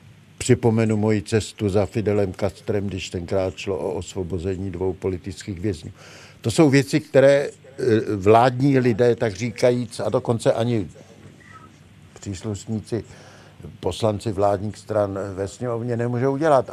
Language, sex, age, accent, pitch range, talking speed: Czech, male, 60-79, native, 105-135 Hz, 120 wpm